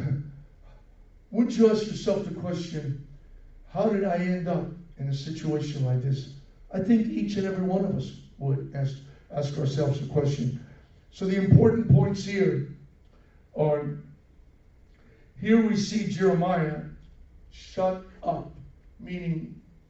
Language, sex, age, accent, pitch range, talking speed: English, male, 60-79, American, 135-185 Hz, 130 wpm